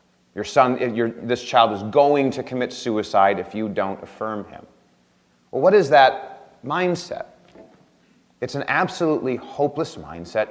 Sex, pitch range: male, 105-130 Hz